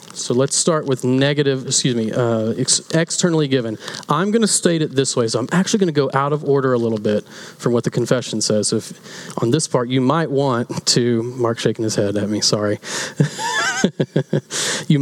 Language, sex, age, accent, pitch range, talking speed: English, male, 30-49, American, 120-160 Hz, 200 wpm